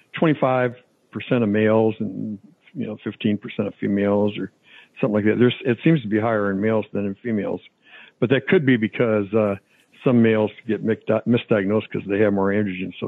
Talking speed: 180 wpm